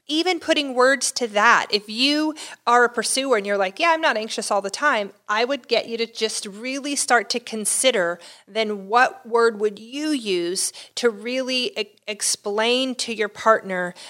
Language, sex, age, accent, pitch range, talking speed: English, female, 40-59, American, 200-255 Hz, 180 wpm